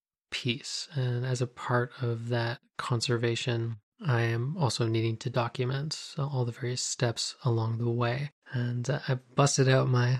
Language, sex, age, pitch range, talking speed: English, male, 20-39, 125-140 Hz, 160 wpm